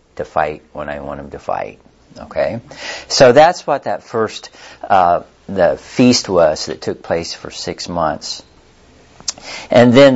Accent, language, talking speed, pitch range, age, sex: American, English, 155 wpm, 90-135 Hz, 50-69, male